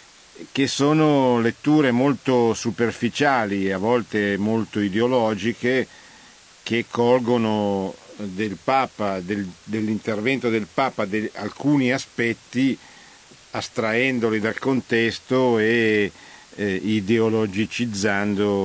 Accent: native